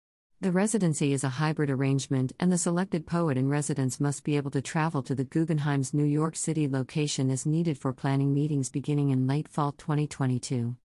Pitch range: 130-155 Hz